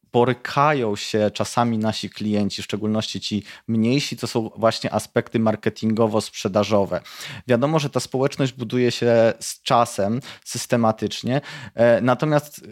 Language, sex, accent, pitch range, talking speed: Polish, male, native, 110-130 Hz, 120 wpm